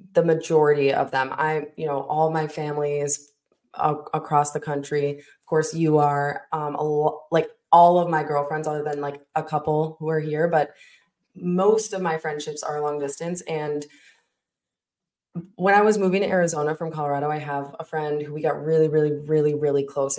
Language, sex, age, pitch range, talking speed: English, female, 20-39, 145-165 Hz, 185 wpm